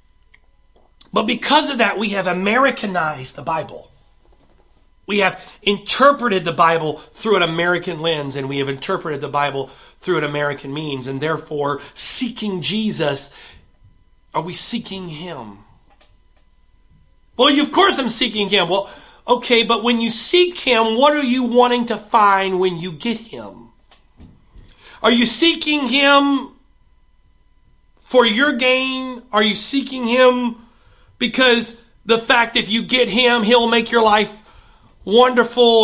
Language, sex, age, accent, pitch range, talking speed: English, male, 40-59, American, 185-245 Hz, 135 wpm